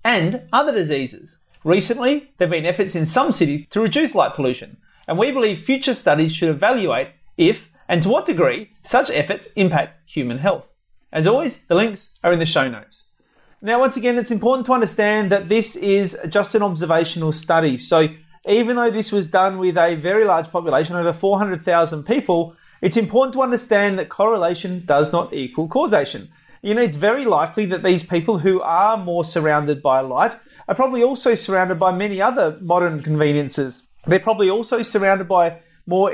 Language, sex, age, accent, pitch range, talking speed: English, male, 30-49, Australian, 165-210 Hz, 180 wpm